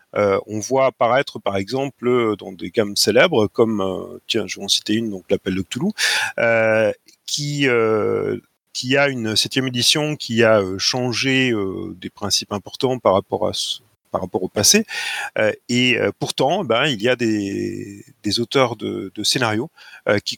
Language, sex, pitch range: French, male, 110-140 Hz